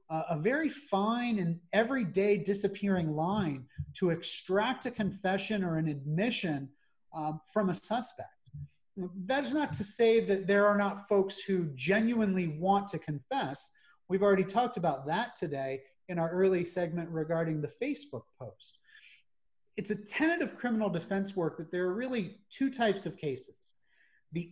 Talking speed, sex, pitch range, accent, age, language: 155 wpm, male, 175-220 Hz, American, 30-49, English